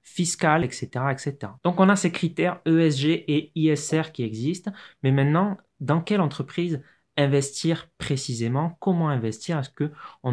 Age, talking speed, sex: 20-39, 140 wpm, male